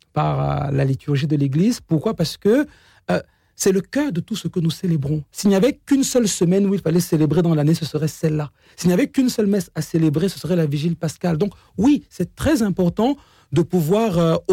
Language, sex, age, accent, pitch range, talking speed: French, male, 40-59, French, 150-195 Hz, 225 wpm